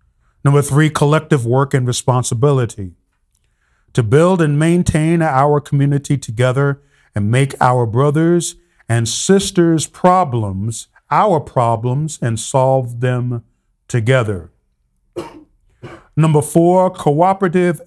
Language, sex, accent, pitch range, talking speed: English, male, American, 110-145 Hz, 95 wpm